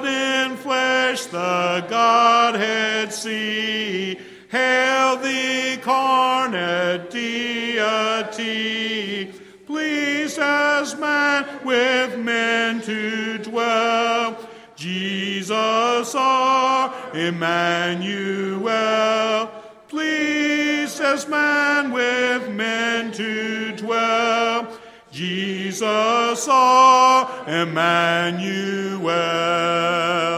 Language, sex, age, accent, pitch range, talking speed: English, male, 50-69, American, 175-255 Hz, 55 wpm